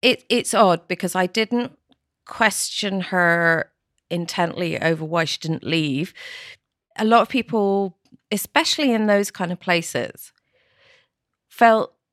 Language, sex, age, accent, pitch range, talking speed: English, female, 40-59, British, 165-205 Hz, 125 wpm